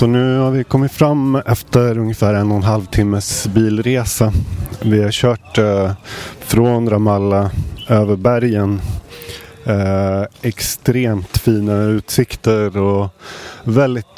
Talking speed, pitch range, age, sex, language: 120 wpm, 100-120 Hz, 30-49, male, Swedish